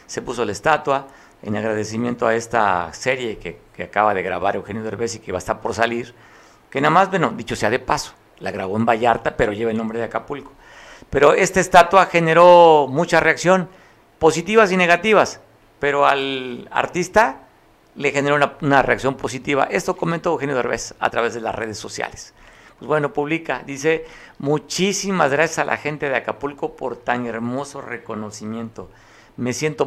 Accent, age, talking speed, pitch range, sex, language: Mexican, 50-69, 175 wpm, 115-155 Hz, male, Spanish